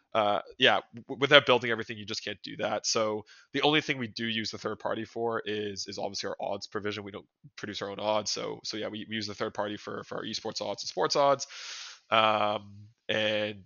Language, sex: English, male